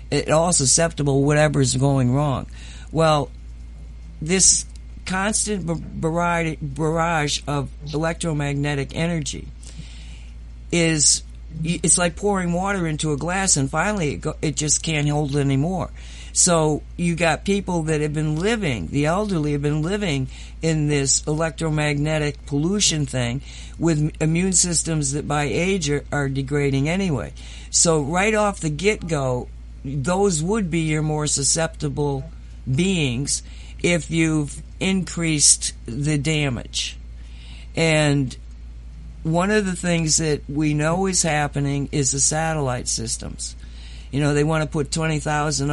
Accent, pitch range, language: American, 135-165 Hz, English